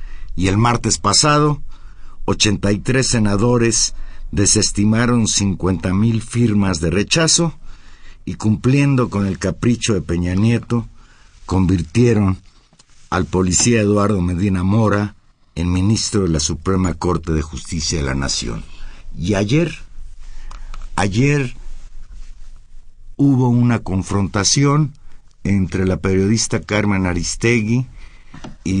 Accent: Mexican